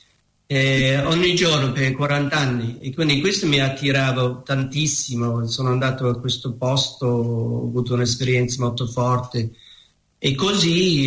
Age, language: 50-69, Italian